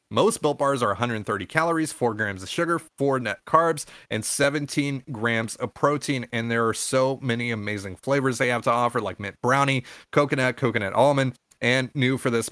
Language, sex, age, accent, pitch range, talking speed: English, male, 30-49, American, 120-150 Hz, 185 wpm